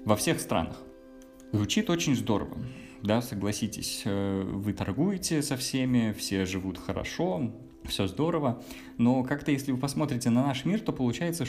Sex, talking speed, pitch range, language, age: male, 140 wpm, 105-130 Hz, Russian, 20-39